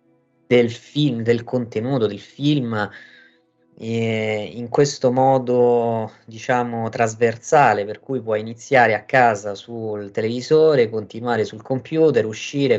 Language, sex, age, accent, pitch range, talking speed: Italian, male, 20-39, native, 105-130 Hz, 115 wpm